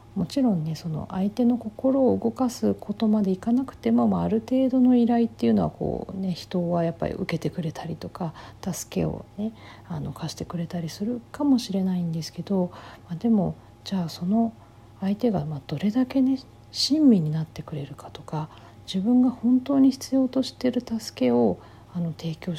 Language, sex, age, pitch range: Japanese, female, 50-69, 155-230 Hz